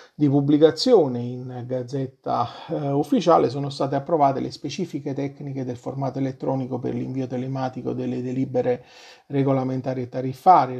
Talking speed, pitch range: 130 wpm, 130-150 Hz